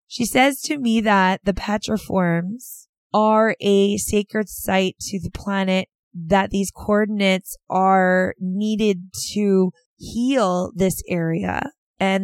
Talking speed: 120 wpm